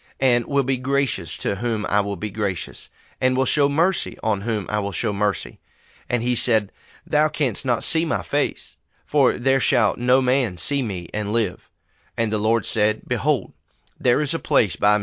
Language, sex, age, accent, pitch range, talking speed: English, male, 30-49, American, 100-130 Hz, 190 wpm